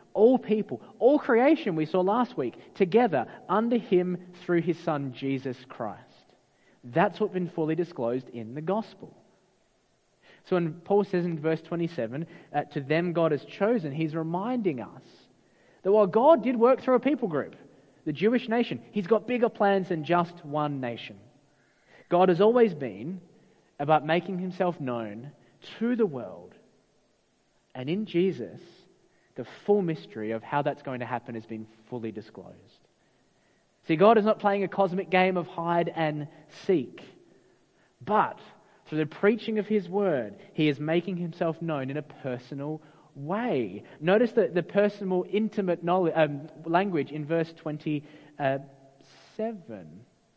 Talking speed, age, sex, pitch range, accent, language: 150 wpm, 30-49, male, 150-205 Hz, Australian, English